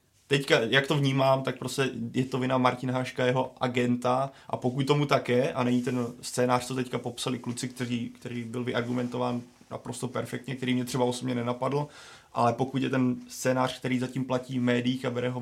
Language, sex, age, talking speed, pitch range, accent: Czech, male, 20-39, 195 wpm, 120-130 Hz, native